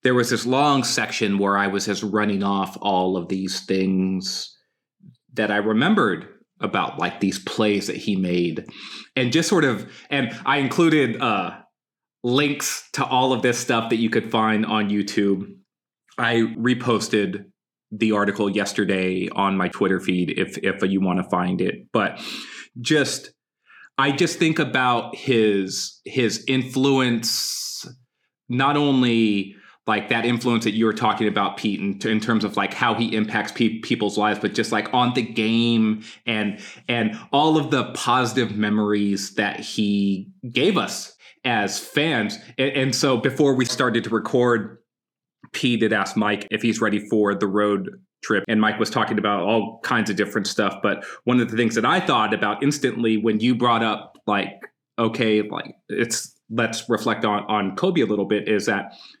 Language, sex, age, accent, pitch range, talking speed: English, male, 30-49, American, 100-125 Hz, 170 wpm